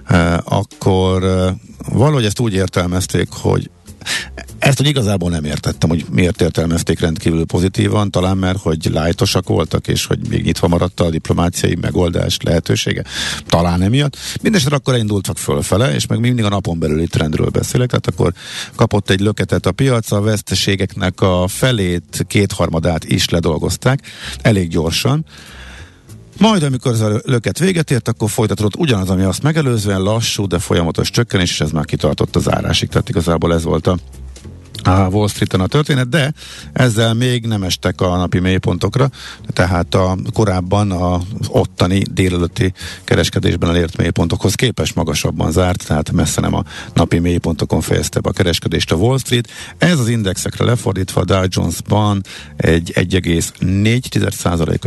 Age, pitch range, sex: 50-69, 85-115 Hz, male